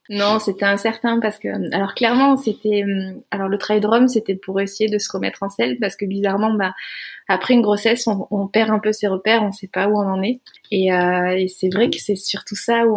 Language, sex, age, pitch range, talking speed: French, female, 20-39, 185-215 Hz, 235 wpm